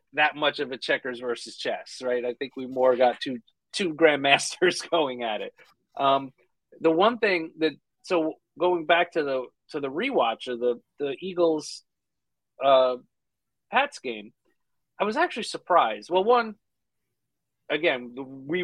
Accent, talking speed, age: American, 155 wpm, 30-49